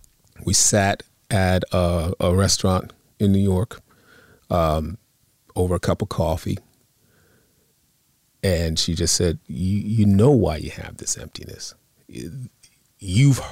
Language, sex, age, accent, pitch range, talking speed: English, male, 40-59, American, 90-110 Hz, 125 wpm